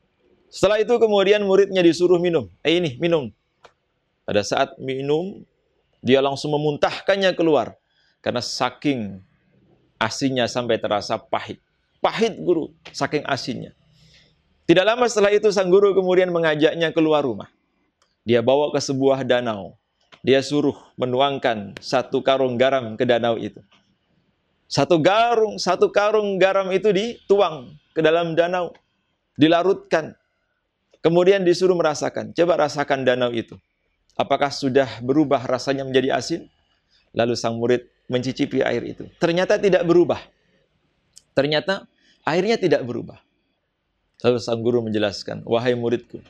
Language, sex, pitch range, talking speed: Indonesian, male, 120-175 Hz, 120 wpm